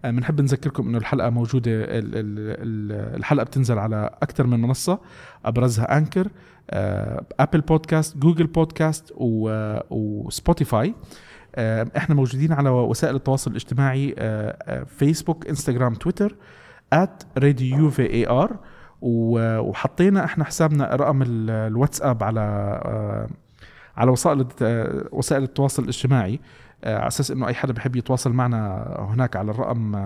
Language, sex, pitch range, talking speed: Arabic, male, 115-150 Hz, 105 wpm